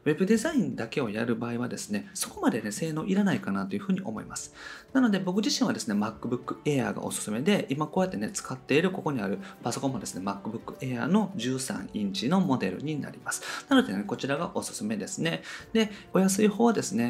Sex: male